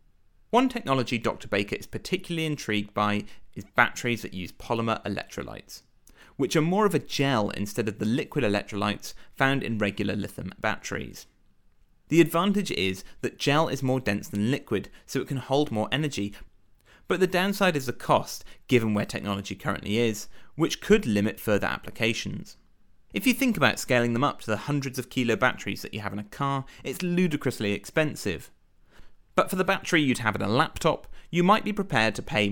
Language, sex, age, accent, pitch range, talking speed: English, male, 30-49, British, 105-150 Hz, 185 wpm